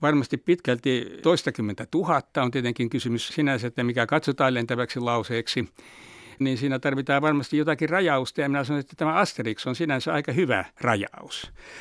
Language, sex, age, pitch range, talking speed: Finnish, male, 60-79, 120-155 Hz, 150 wpm